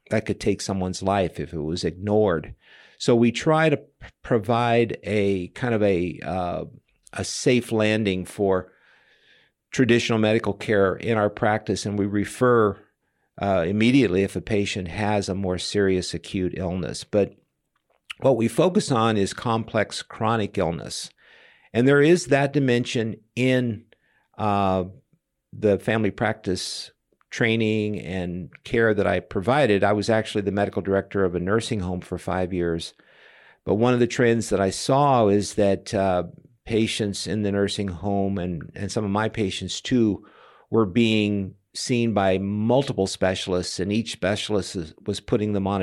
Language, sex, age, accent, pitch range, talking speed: English, male, 50-69, American, 95-115 Hz, 155 wpm